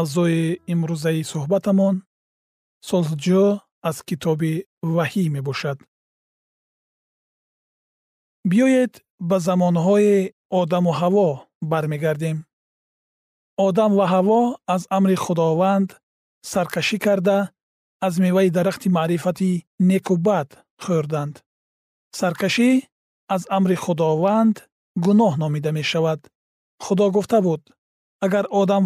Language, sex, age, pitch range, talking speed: Persian, male, 40-59, 165-195 Hz, 90 wpm